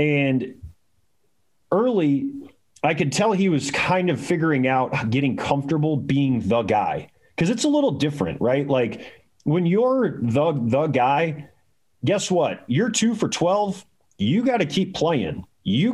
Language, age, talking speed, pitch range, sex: English, 30-49, 150 wpm, 130-175 Hz, male